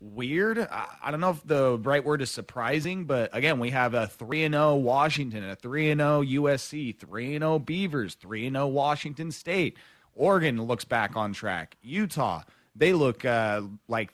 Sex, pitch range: male, 110-140 Hz